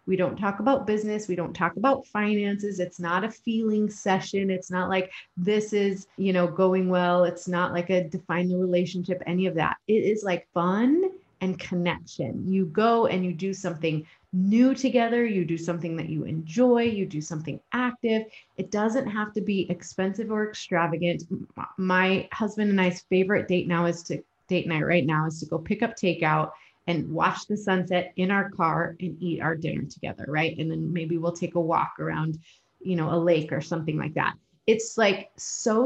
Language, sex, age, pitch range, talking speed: English, female, 30-49, 170-210 Hz, 195 wpm